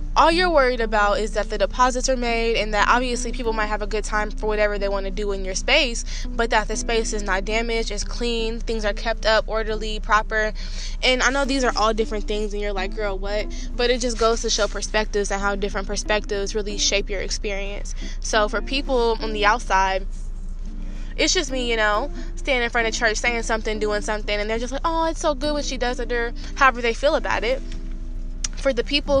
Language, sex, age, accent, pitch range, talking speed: English, female, 10-29, American, 205-245 Hz, 230 wpm